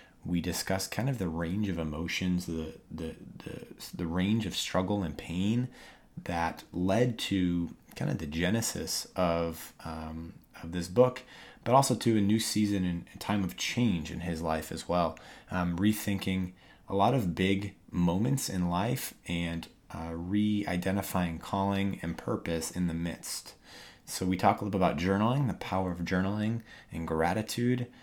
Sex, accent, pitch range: male, American, 85-105 Hz